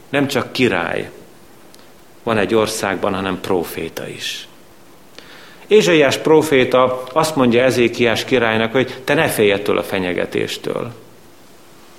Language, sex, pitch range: Hungarian, male, 100-125 Hz